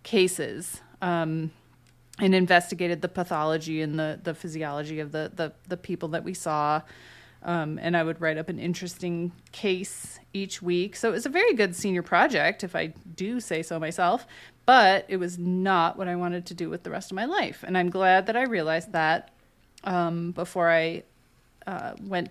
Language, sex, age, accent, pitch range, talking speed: English, female, 30-49, American, 165-195 Hz, 190 wpm